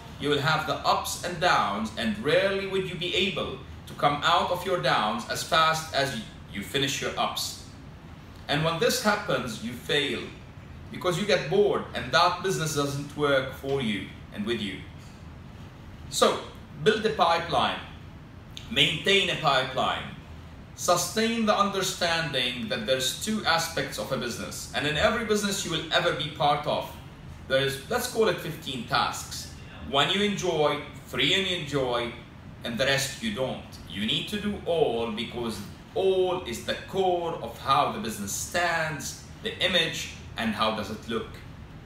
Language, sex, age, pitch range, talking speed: English, male, 30-49, 125-185 Hz, 160 wpm